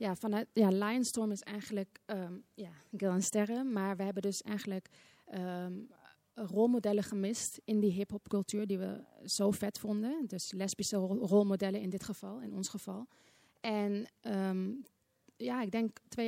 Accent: Dutch